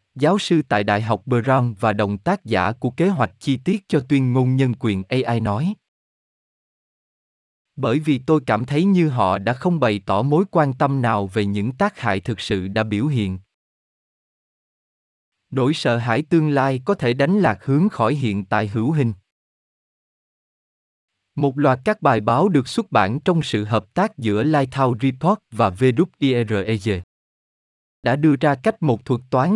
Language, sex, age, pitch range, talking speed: Vietnamese, male, 20-39, 110-150 Hz, 175 wpm